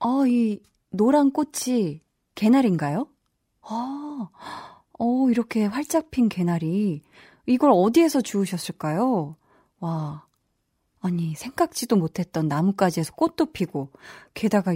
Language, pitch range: Korean, 175-255 Hz